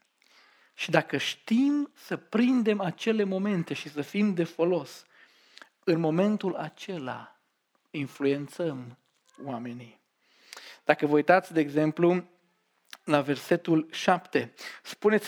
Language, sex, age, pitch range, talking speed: Romanian, male, 40-59, 150-185 Hz, 100 wpm